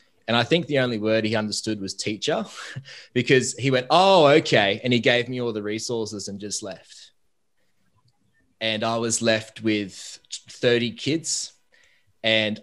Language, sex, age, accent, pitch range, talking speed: English, male, 20-39, Australian, 105-125 Hz, 155 wpm